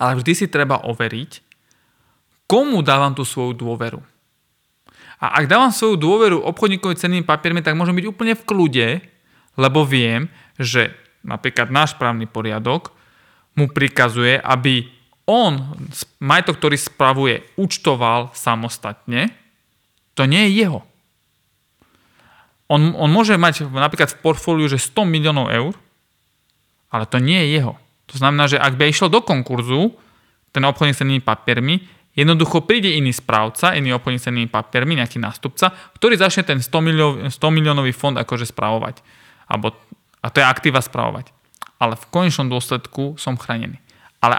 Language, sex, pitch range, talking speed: Slovak, male, 125-160 Hz, 140 wpm